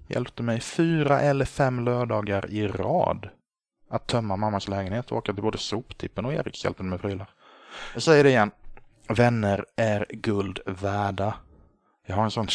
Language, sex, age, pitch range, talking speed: Swedish, male, 20-39, 95-115 Hz, 160 wpm